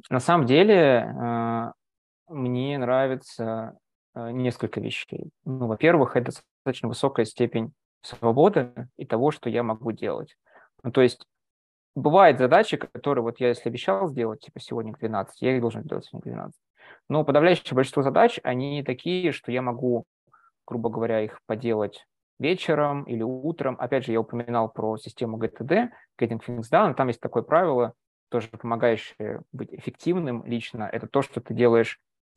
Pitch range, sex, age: 115-140 Hz, male, 20-39